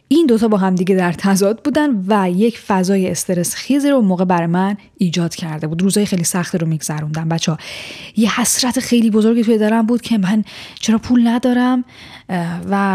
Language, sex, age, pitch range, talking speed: Persian, female, 10-29, 190-240 Hz, 180 wpm